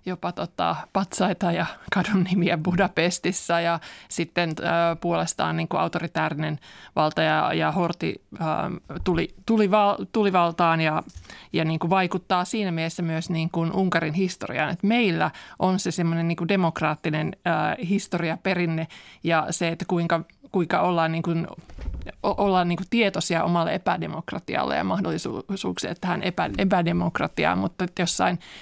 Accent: native